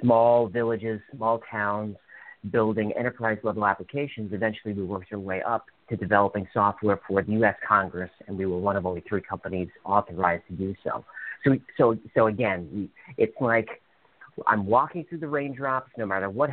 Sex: male